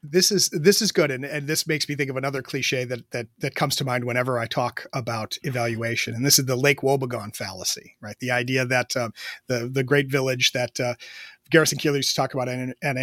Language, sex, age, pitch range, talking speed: English, male, 30-49, 130-155 Hz, 230 wpm